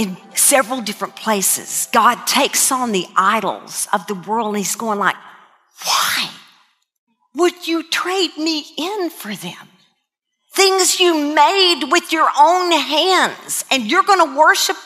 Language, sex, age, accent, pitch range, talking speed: English, female, 50-69, American, 230-335 Hz, 145 wpm